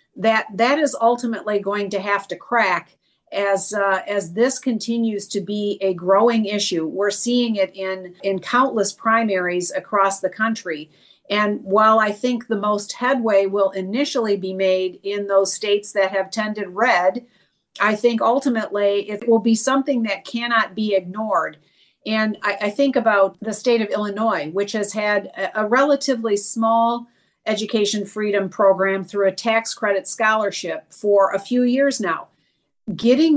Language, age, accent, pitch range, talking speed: English, 50-69, American, 200-240 Hz, 160 wpm